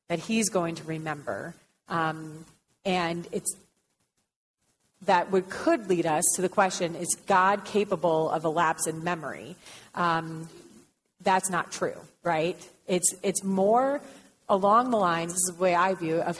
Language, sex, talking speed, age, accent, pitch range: English, female, 155 wpm, 30-49, American, 170-215 Hz